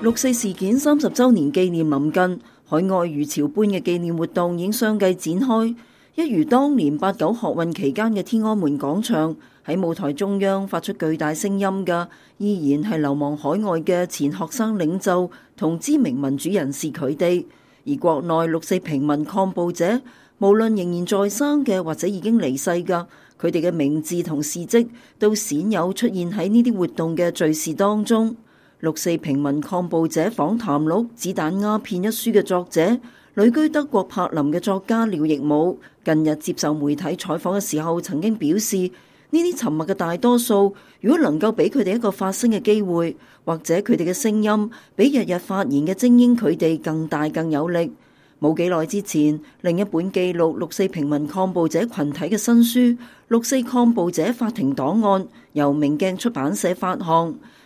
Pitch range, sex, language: 160-220 Hz, female, English